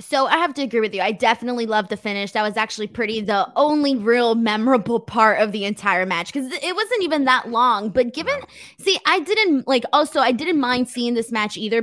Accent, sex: American, female